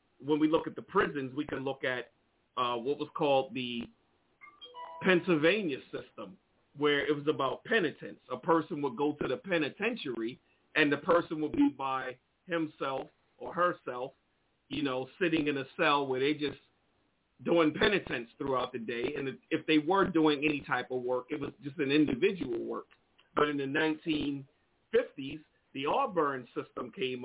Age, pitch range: 40-59, 140-175 Hz